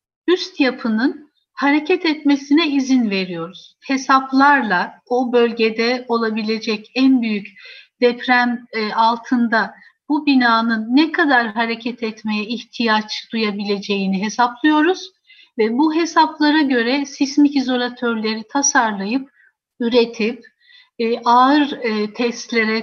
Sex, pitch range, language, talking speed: female, 225-295 Hz, Turkish, 85 wpm